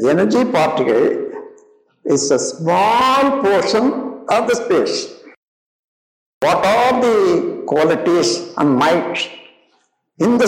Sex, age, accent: male, 60-79, native